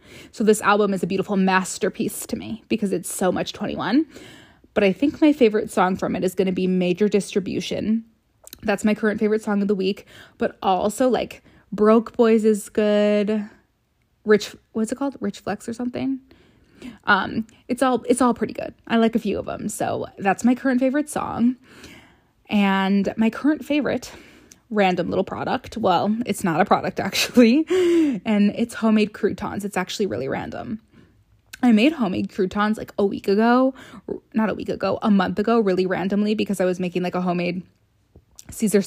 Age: 20-39